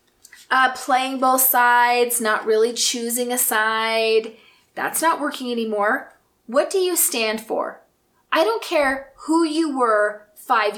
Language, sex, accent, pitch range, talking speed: English, female, American, 220-305 Hz, 140 wpm